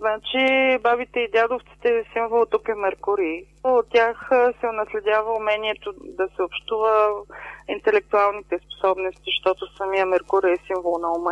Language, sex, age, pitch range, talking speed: Bulgarian, female, 30-49, 190-235 Hz, 140 wpm